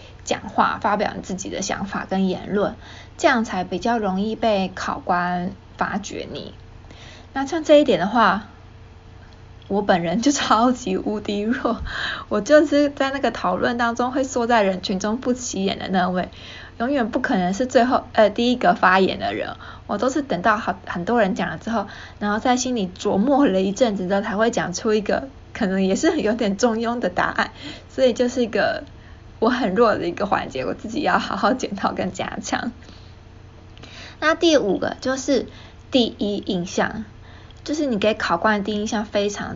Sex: female